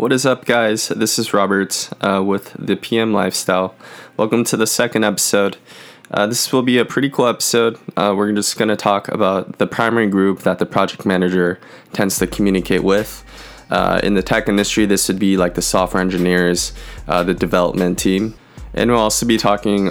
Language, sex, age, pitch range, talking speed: English, male, 20-39, 90-105 Hz, 190 wpm